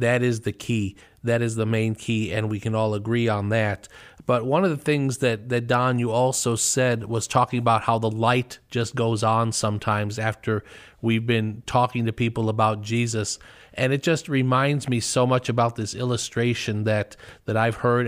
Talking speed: 195 wpm